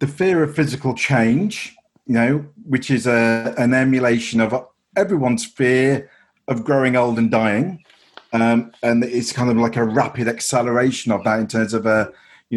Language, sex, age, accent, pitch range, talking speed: English, male, 40-59, British, 110-125 Hz, 170 wpm